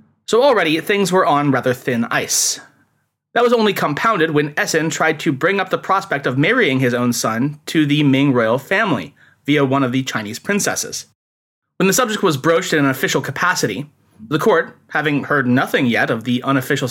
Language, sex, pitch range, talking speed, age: English, male, 135-175 Hz, 190 wpm, 30-49